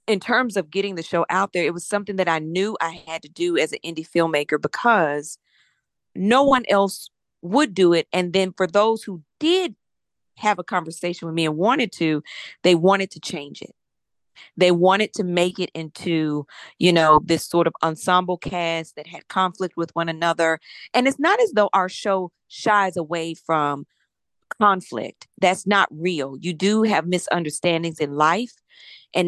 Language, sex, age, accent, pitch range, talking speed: English, female, 40-59, American, 165-210 Hz, 180 wpm